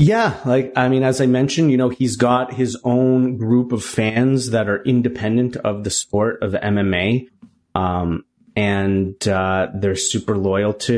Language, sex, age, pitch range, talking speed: English, male, 30-49, 105-130 Hz, 170 wpm